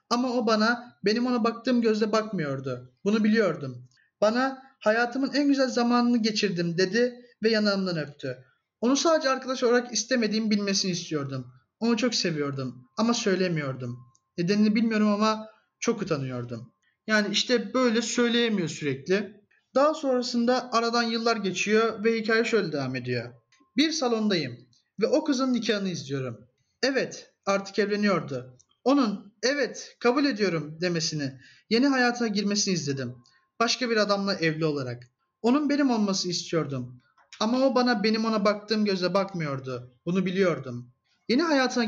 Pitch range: 160-235 Hz